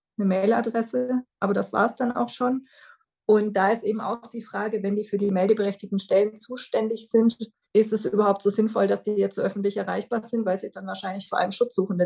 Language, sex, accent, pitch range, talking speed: German, female, German, 190-230 Hz, 210 wpm